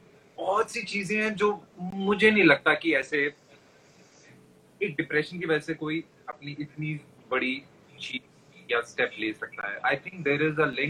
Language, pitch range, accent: Hindi, 145-185 Hz, native